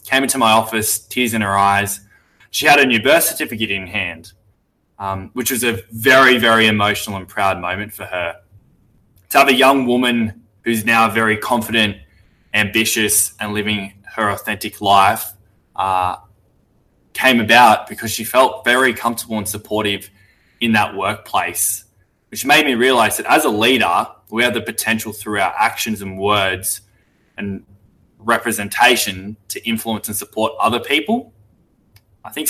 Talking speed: 155 wpm